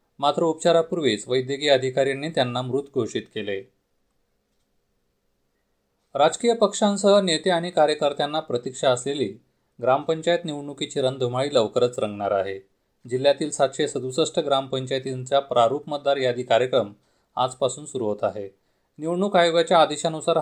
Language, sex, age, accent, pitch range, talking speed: Marathi, male, 30-49, native, 115-155 Hz, 105 wpm